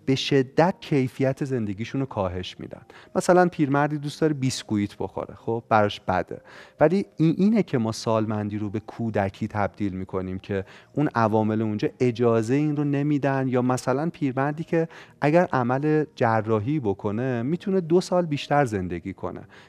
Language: Persian